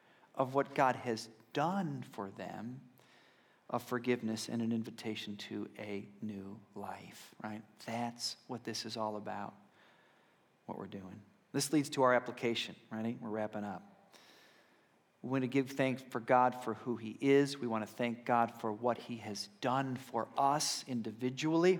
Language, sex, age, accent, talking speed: English, male, 40-59, American, 160 wpm